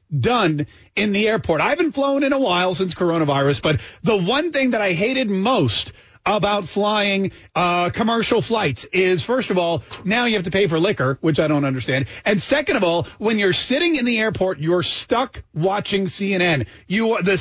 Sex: male